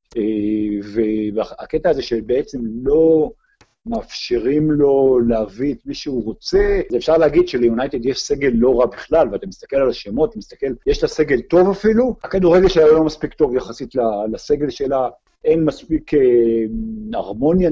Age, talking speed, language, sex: 50-69, 140 wpm, Hebrew, male